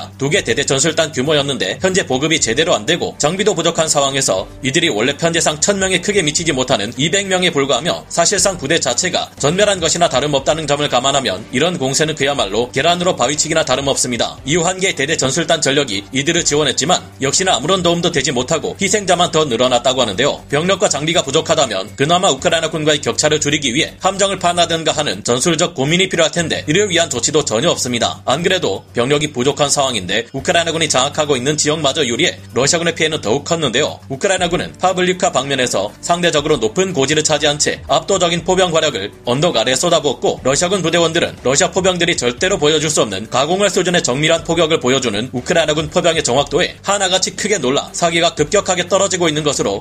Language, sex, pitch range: Korean, male, 140-175 Hz